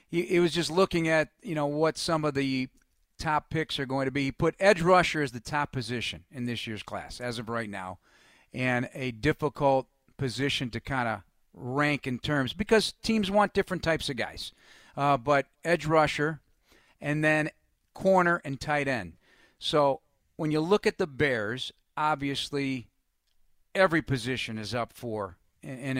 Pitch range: 125-155 Hz